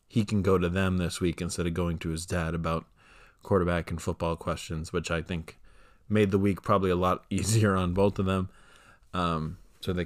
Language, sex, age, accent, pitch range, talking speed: English, male, 20-39, American, 85-95 Hz, 210 wpm